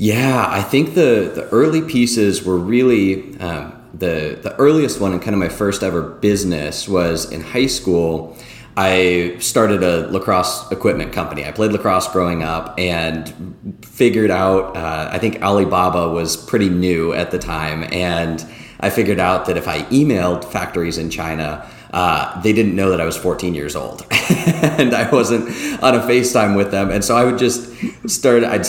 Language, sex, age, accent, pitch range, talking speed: English, male, 30-49, American, 85-105 Hz, 180 wpm